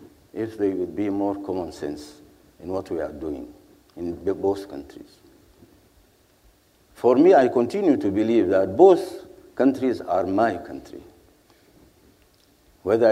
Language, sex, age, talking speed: English, male, 60-79, 130 wpm